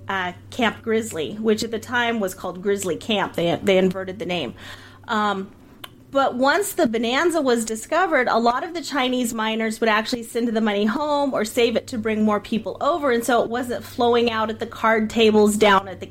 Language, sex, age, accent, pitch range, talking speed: English, female, 30-49, American, 205-245 Hz, 210 wpm